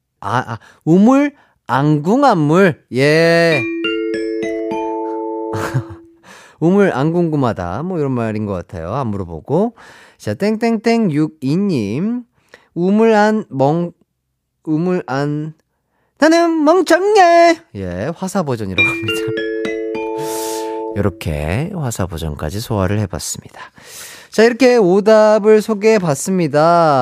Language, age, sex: Korean, 30-49, male